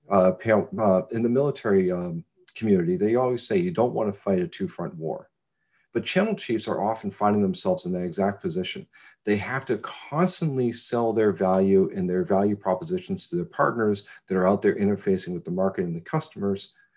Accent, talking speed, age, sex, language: American, 185 wpm, 50-69, male, English